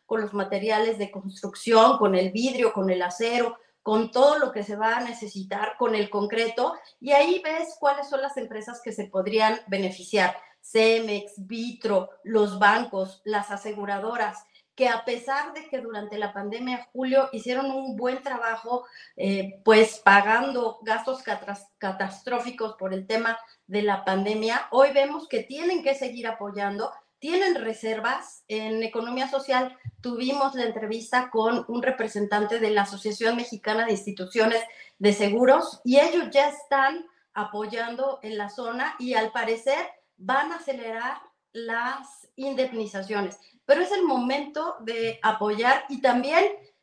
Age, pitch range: 40-59, 210-265 Hz